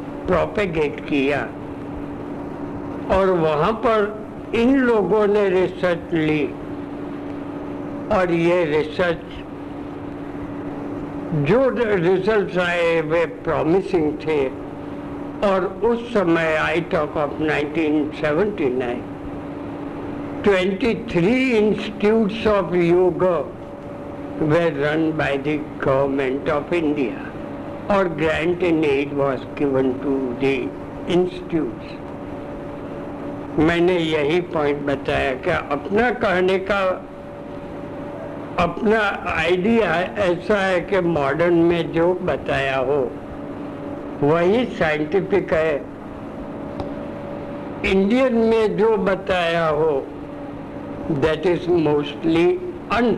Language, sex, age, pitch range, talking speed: Hindi, male, 60-79, 150-195 Hz, 90 wpm